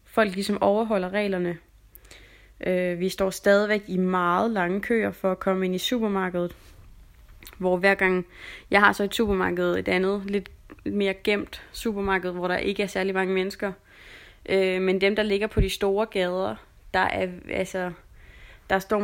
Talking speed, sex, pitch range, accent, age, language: 165 wpm, female, 180-205 Hz, native, 20-39, Danish